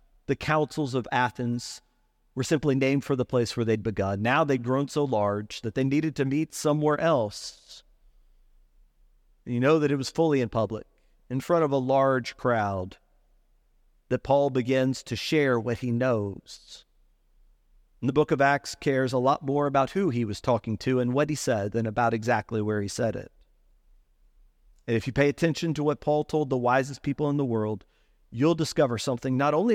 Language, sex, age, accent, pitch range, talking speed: English, male, 40-59, American, 115-150 Hz, 185 wpm